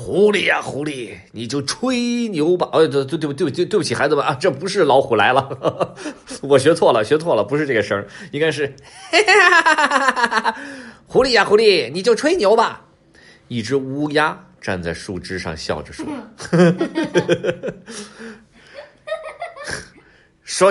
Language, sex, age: Chinese, male, 30-49